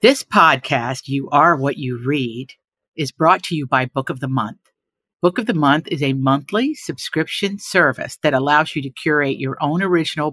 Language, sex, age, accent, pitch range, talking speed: English, female, 50-69, American, 135-185 Hz, 190 wpm